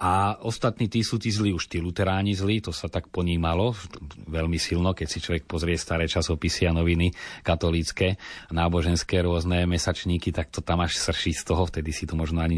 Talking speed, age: 190 wpm, 30-49